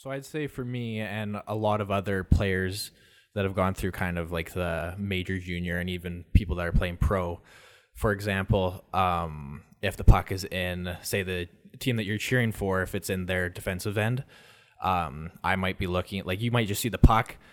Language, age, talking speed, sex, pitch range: English, 20-39, 210 wpm, male, 90-105 Hz